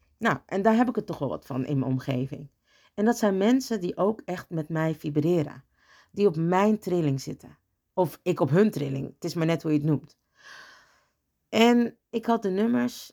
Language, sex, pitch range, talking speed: Dutch, female, 155-205 Hz, 210 wpm